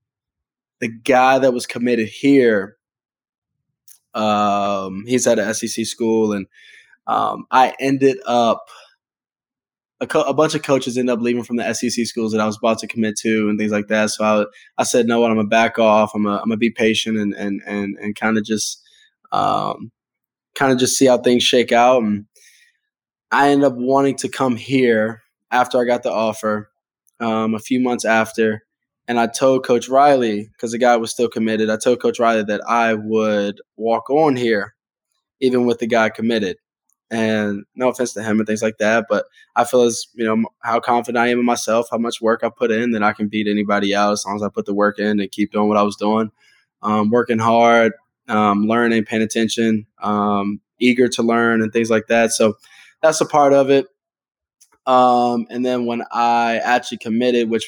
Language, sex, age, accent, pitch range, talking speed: English, male, 20-39, American, 110-125 Hz, 200 wpm